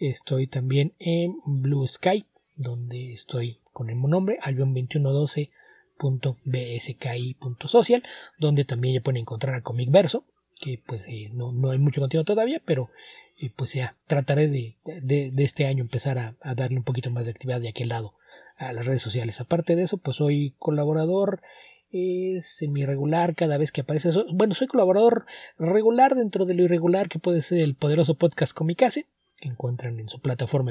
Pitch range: 125-165 Hz